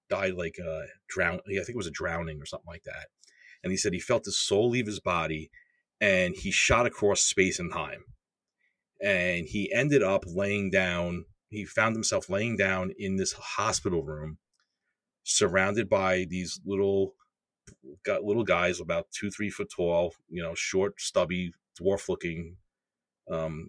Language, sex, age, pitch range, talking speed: English, male, 40-59, 90-110 Hz, 160 wpm